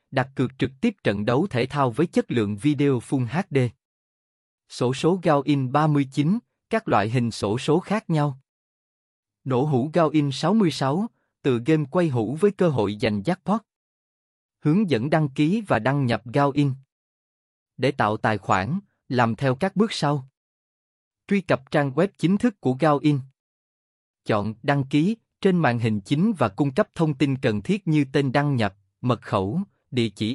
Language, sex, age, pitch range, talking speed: Vietnamese, male, 20-39, 115-160 Hz, 175 wpm